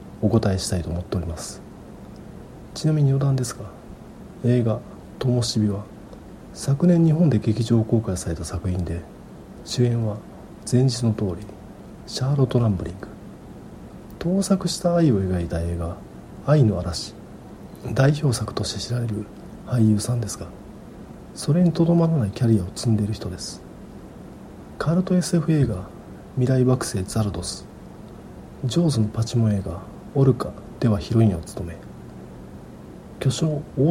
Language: Japanese